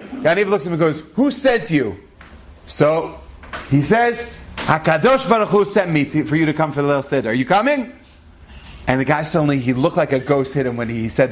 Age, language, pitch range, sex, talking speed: 30-49, English, 145-195 Hz, male, 235 wpm